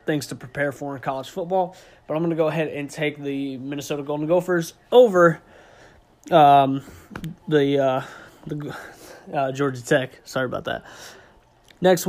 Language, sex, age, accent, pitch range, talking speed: English, male, 20-39, American, 140-180 Hz, 155 wpm